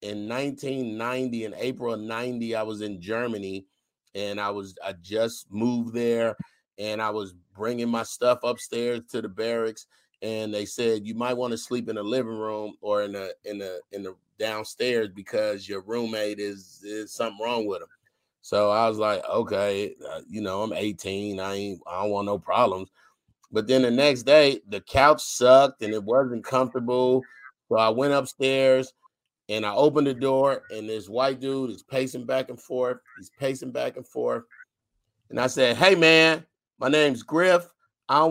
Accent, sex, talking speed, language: American, male, 185 wpm, English